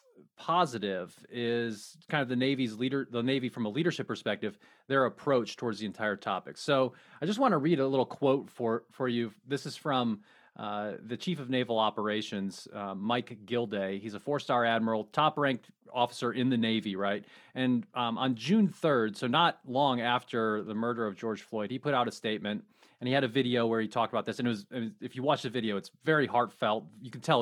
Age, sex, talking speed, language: 30-49, male, 210 wpm, English